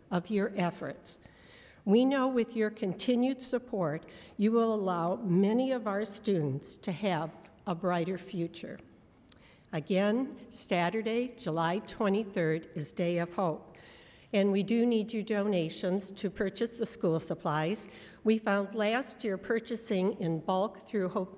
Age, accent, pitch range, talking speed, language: 60-79, American, 175-215 Hz, 140 wpm, English